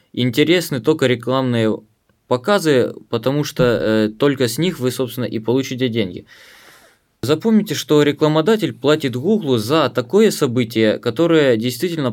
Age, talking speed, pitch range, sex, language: 20-39, 125 wpm, 120-150 Hz, male, Ukrainian